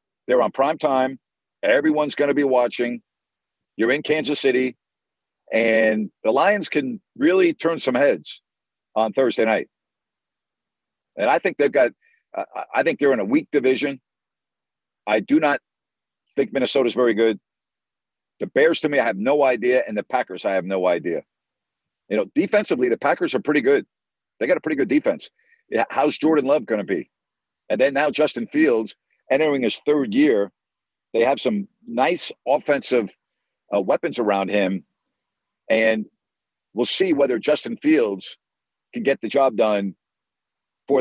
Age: 50-69